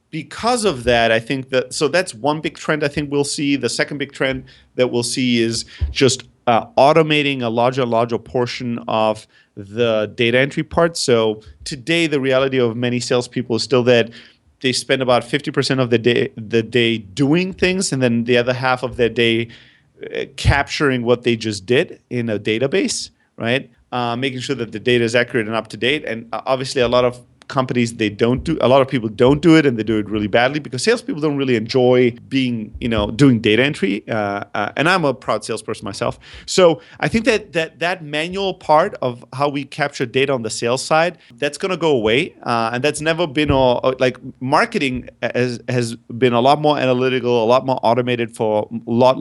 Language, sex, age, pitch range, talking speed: English, male, 30-49, 115-145 Hz, 210 wpm